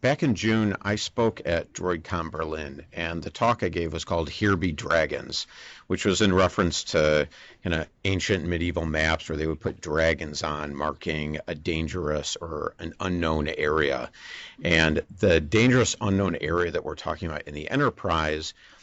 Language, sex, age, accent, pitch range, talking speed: English, male, 50-69, American, 75-95 Hz, 170 wpm